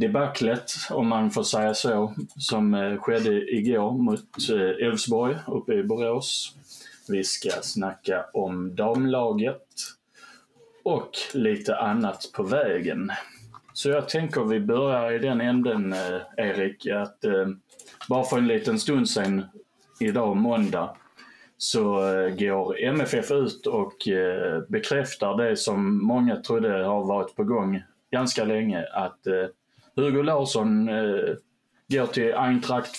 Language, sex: Swedish, male